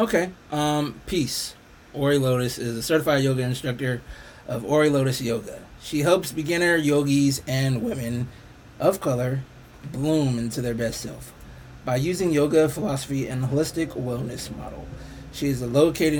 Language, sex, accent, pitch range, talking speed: English, male, American, 125-150 Hz, 140 wpm